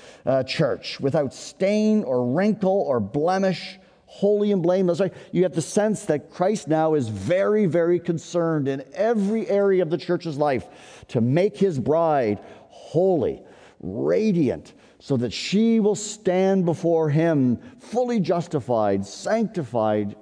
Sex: male